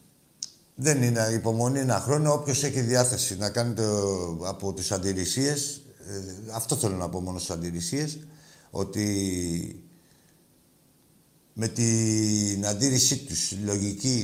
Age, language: 60-79, Greek